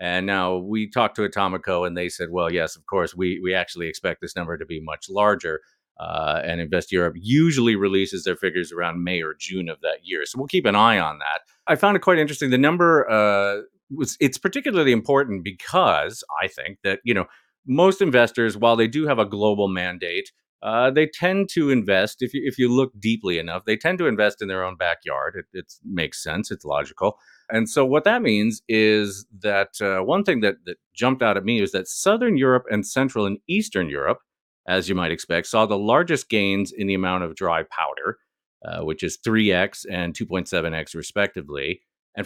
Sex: male